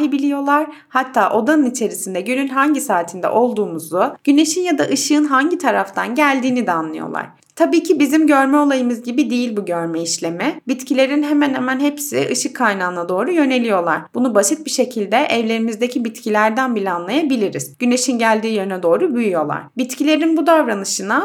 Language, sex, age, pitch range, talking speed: Turkish, female, 30-49, 205-290 Hz, 145 wpm